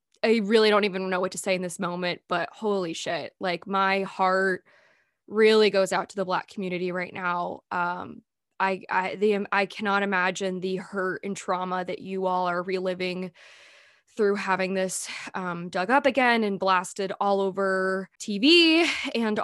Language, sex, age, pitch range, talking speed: English, female, 20-39, 185-220 Hz, 170 wpm